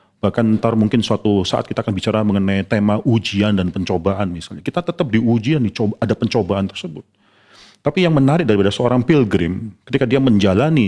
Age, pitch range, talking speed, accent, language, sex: 40-59, 105-135 Hz, 165 wpm, native, Indonesian, male